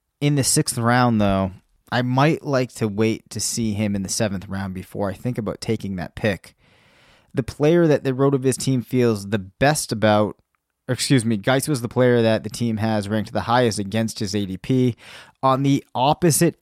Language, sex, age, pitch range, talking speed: English, male, 20-39, 110-135 Hz, 200 wpm